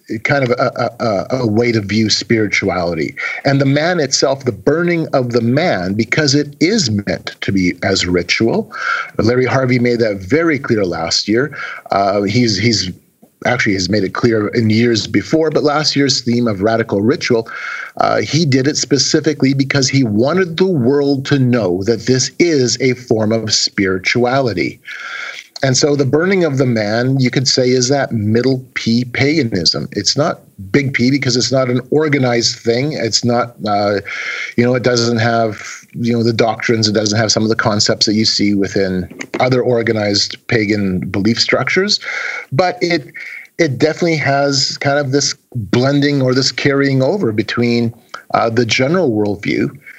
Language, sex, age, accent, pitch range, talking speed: English, male, 40-59, American, 110-140 Hz, 170 wpm